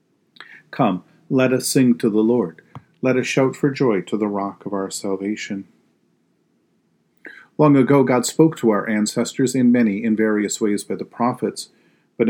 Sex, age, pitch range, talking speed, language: male, 40-59, 100-130 Hz, 165 wpm, English